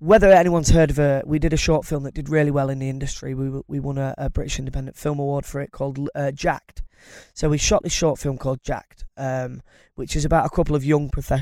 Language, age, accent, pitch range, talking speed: English, 20-39, British, 135-155 Hz, 250 wpm